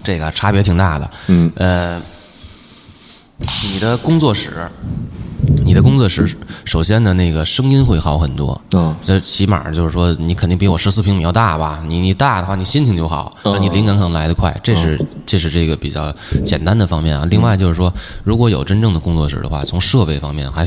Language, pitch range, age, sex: Chinese, 85-105 Hz, 20-39, male